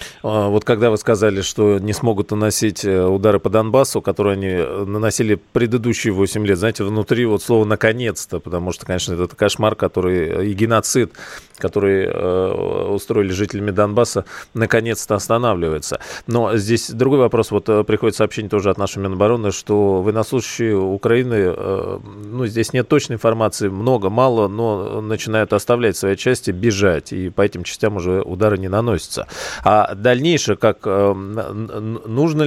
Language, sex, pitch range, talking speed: Russian, male, 100-115 Hz, 145 wpm